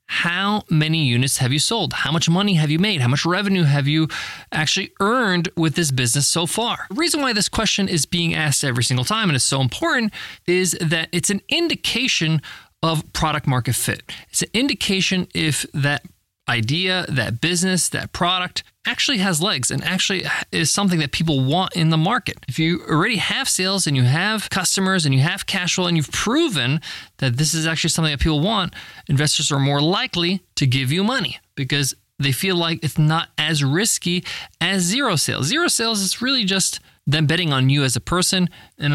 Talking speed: 195 wpm